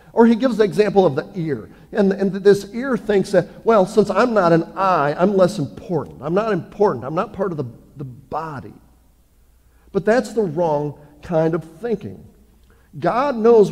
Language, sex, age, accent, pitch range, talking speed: English, male, 50-69, American, 150-205 Hz, 185 wpm